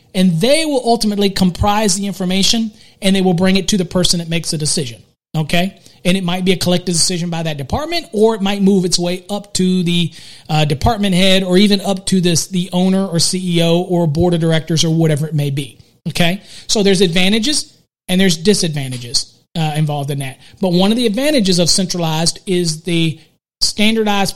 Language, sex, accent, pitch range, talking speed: English, male, American, 165-200 Hz, 200 wpm